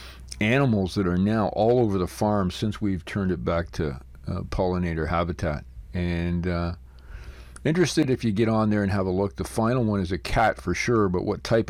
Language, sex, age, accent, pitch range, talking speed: English, male, 50-69, American, 85-105 Hz, 205 wpm